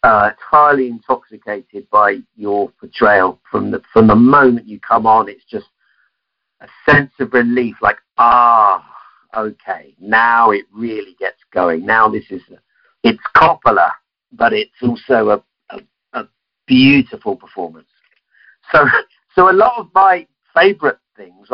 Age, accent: 50-69, British